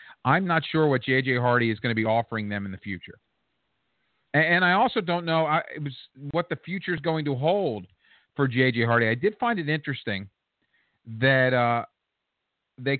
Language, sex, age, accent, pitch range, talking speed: English, male, 40-59, American, 120-165 Hz, 195 wpm